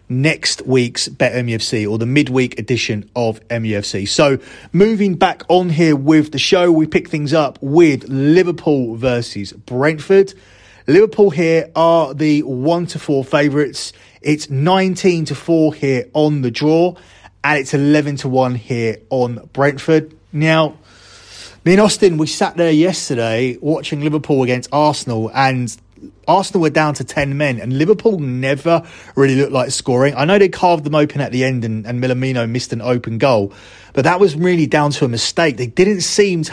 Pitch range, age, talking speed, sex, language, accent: 125-165 Hz, 30-49, 170 wpm, male, English, British